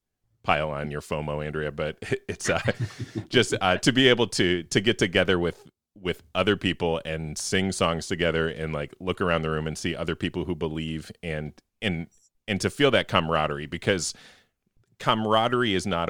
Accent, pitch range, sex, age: American, 80-110 Hz, male, 30-49